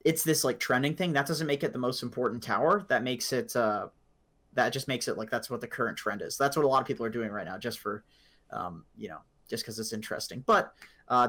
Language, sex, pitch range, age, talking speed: English, male, 115-140 Hz, 30-49, 260 wpm